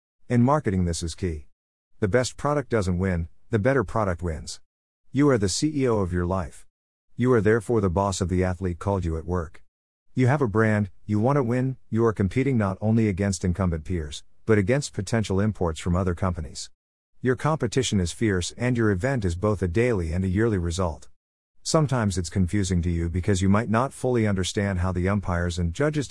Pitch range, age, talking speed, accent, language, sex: 90-120 Hz, 50-69, 200 wpm, American, English, male